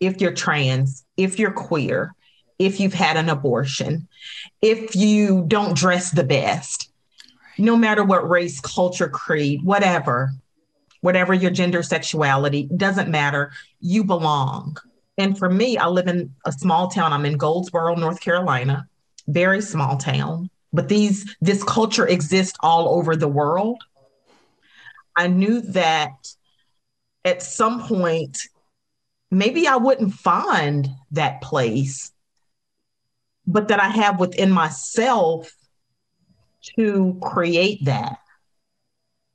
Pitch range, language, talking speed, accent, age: 145-195 Hz, English, 120 wpm, American, 40-59